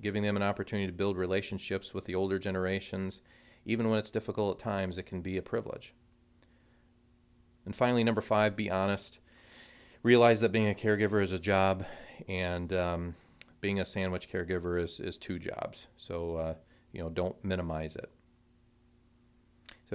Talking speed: 160 wpm